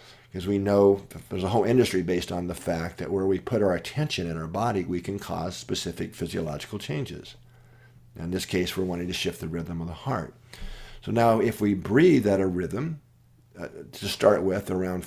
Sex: male